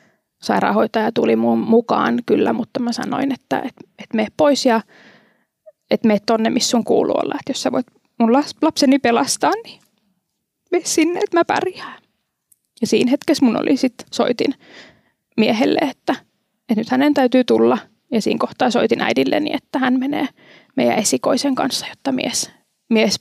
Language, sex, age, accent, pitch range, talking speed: Finnish, female, 20-39, native, 220-275 Hz, 155 wpm